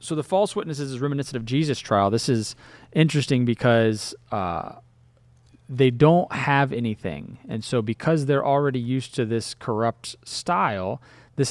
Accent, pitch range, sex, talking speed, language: American, 115-145 Hz, male, 150 wpm, English